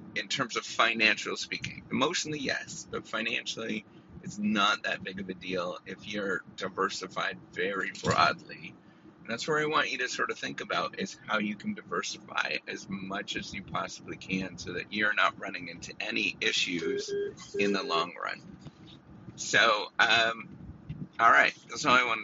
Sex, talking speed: male, 170 wpm